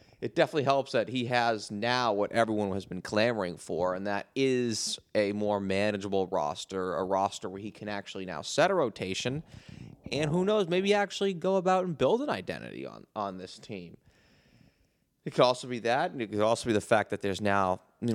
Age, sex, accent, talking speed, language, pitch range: 20-39, male, American, 200 wpm, English, 95-120 Hz